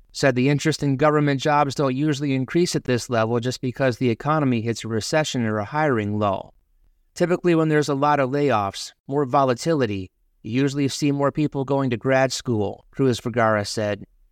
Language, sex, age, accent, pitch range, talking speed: English, male, 30-49, American, 120-145 Hz, 185 wpm